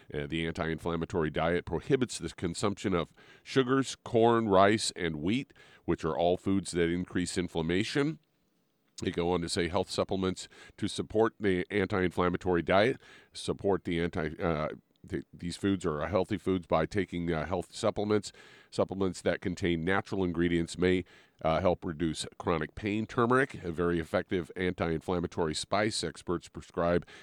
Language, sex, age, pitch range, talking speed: English, male, 40-59, 85-100 Hz, 145 wpm